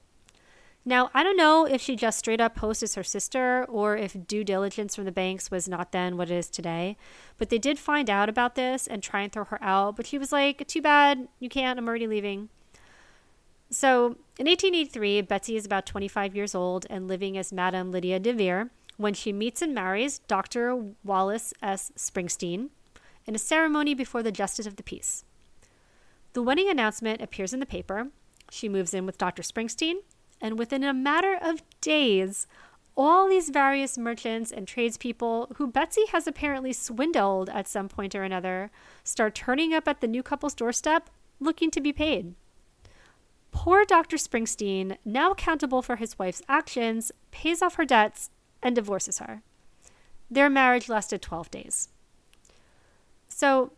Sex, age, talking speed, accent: female, 30-49, 170 wpm, American